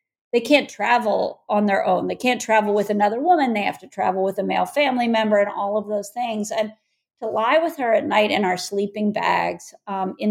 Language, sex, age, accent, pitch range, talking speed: English, female, 50-69, American, 200-265 Hz, 225 wpm